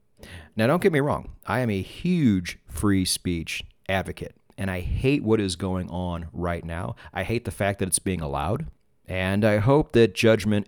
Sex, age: male, 30-49